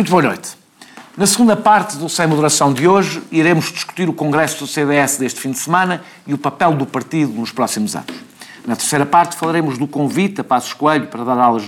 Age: 50-69